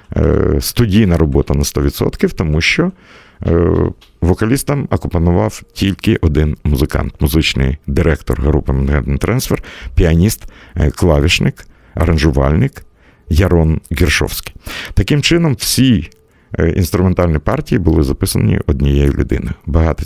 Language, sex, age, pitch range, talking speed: Russian, male, 50-69, 75-95 Hz, 95 wpm